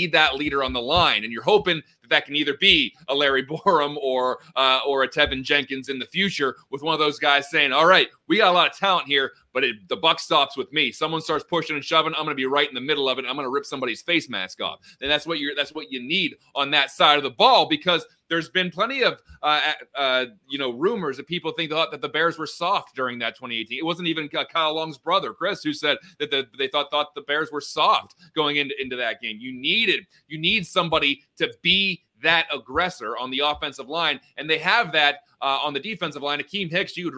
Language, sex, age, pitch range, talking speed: English, male, 30-49, 140-170 Hz, 245 wpm